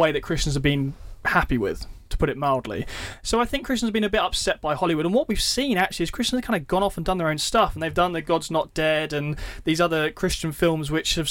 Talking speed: 280 wpm